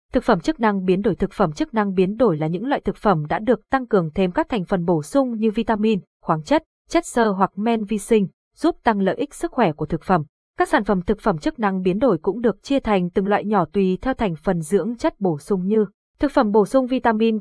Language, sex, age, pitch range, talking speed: Vietnamese, female, 20-39, 190-245 Hz, 260 wpm